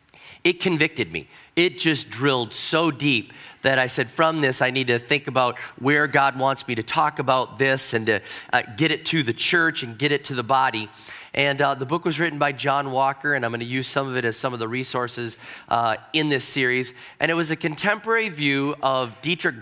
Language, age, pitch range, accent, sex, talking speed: English, 30-49, 125-150 Hz, American, male, 225 wpm